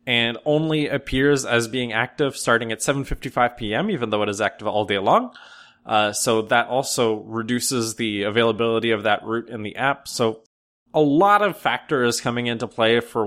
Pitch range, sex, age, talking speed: 110-135 Hz, male, 20-39, 175 wpm